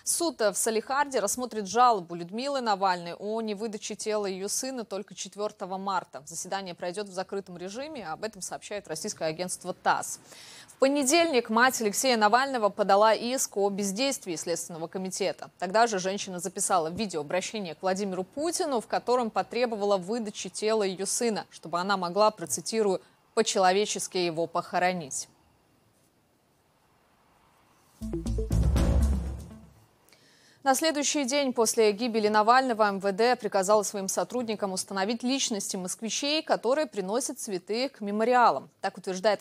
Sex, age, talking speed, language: female, 20-39, 120 wpm, Russian